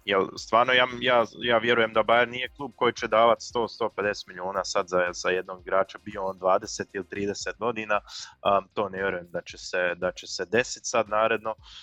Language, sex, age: Croatian, male, 20-39